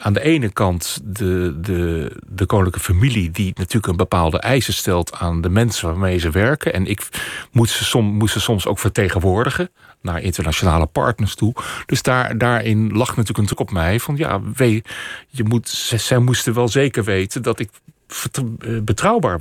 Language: Dutch